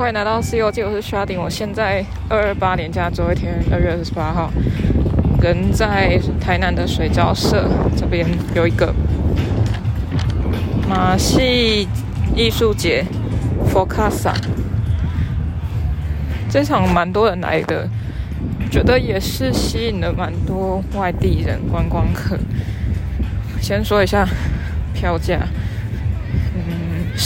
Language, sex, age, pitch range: Chinese, female, 20-39, 90-100 Hz